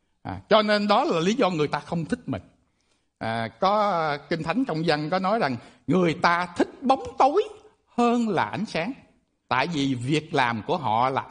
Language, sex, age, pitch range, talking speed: Vietnamese, male, 60-79, 150-230 Hz, 195 wpm